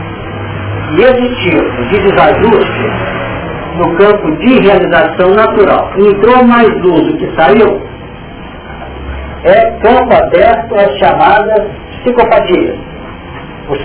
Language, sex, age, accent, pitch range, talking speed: Portuguese, male, 60-79, Brazilian, 180-230 Hz, 105 wpm